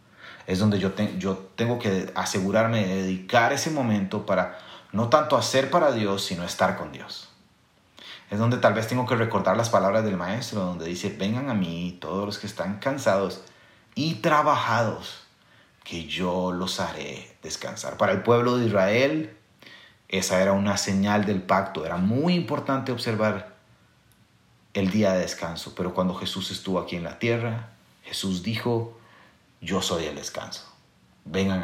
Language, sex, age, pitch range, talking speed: Spanish, male, 30-49, 90-115 Hz, 160 wpm